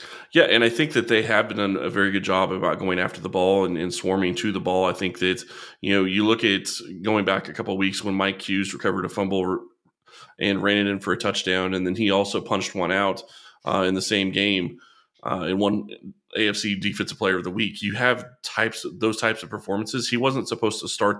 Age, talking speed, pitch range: 20-39, 240 wpm, 95-105 Hz